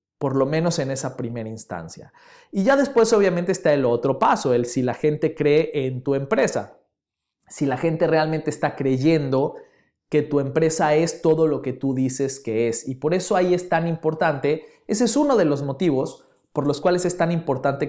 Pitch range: 135-165 Hz